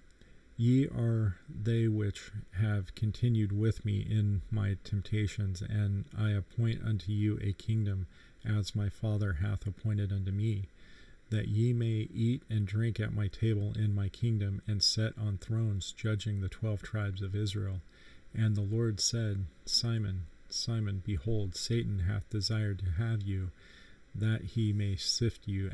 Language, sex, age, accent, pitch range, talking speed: English, male, 40-59, American, 95-110 Hz, 150 wpm